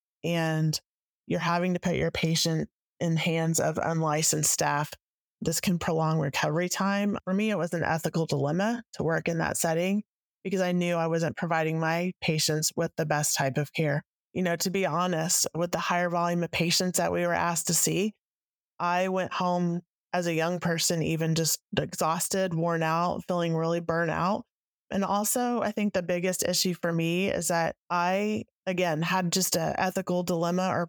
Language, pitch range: English, 160-180 Hz